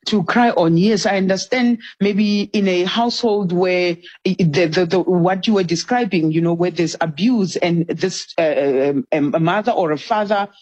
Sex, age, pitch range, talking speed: female, 40-59, 170-210 Hz, 180 wpm